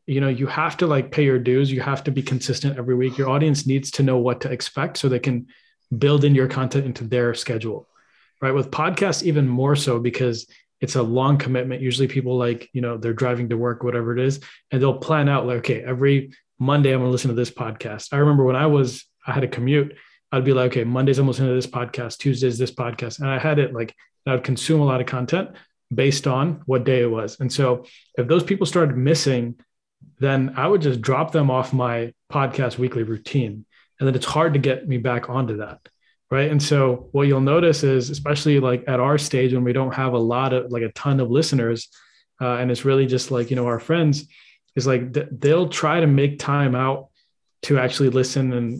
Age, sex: 20-39, male